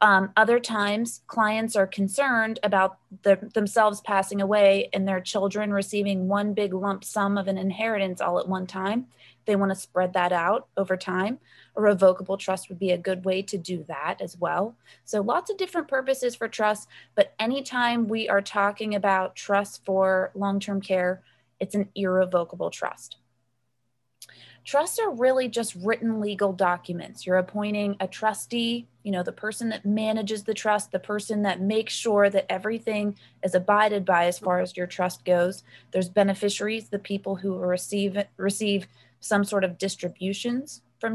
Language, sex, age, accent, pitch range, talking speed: English, female, 20-39, American, 185-225 Hz, 170 wpm